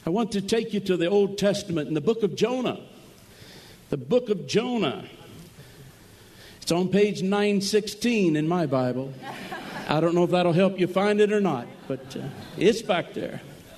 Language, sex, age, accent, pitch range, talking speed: English, male, 60-79, American, 170-220 Hz, 185 wpm